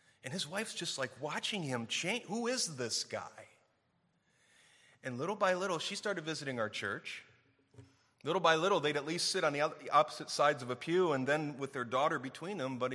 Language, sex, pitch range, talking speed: English, male, 110-135 Hz, 200 wpm